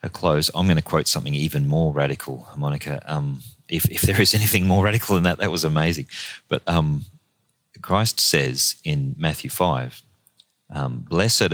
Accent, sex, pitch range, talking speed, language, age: Australian, male, 75-95 Hz, 165 wpm, English, 30-49